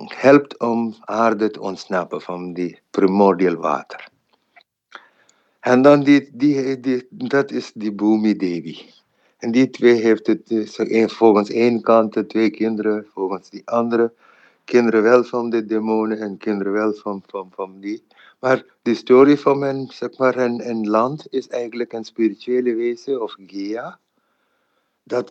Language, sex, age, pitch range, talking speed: English, male, 60-79, 110-140 Hz, 140 wpm